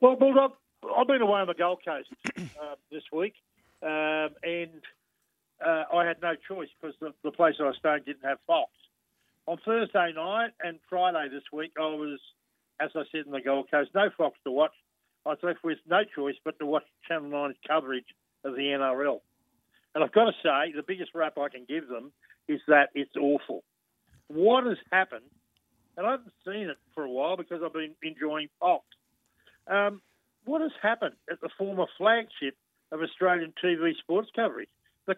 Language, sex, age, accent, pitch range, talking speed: English, male, 50-69, Australian, 150-205 Hz, 185 wpm